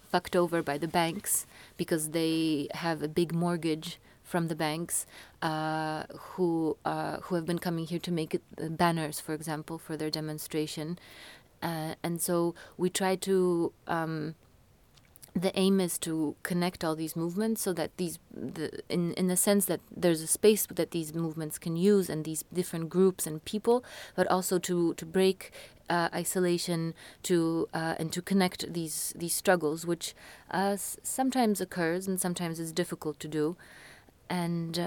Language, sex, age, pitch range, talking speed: French, female, 30-49, 160-185 Hz, 160 wpm